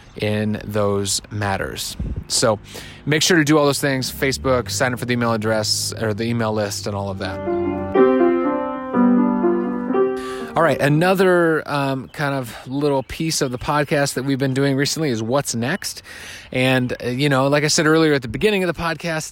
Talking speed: 185 wpm